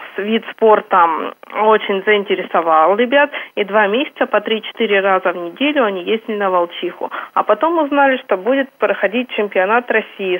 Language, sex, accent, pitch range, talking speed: Russian, female, native, 205-260 Hz, 145 wpm